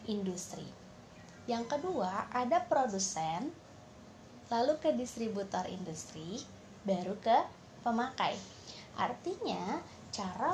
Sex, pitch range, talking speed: female, 185-245 Hz, 80 wpm